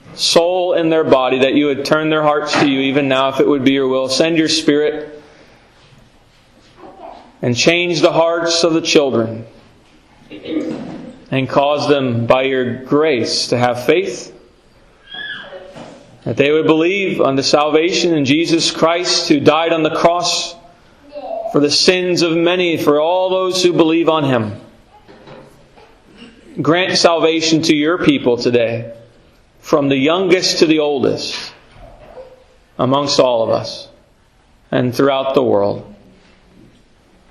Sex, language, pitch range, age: male, English, 140-170 Hz, 40-59